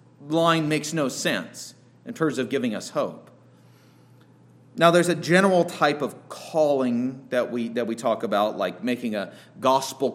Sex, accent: male, American